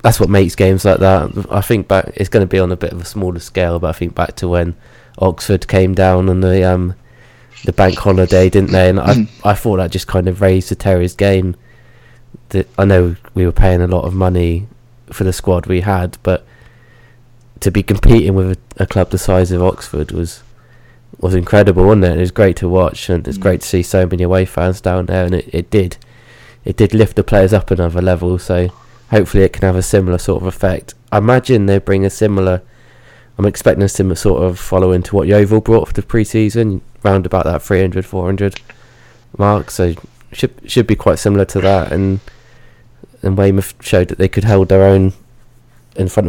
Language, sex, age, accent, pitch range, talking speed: English, male, 20-39, British, 90-105 Hz, 215 wpm